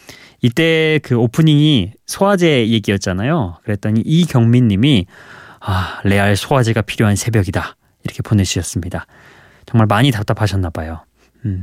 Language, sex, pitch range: Korean, male, 105-145 Hz